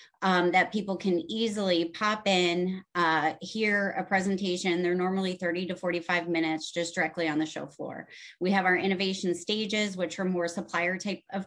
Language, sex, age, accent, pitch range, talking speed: English, female, 30-49, American, 170-195 Hz, 180 wpm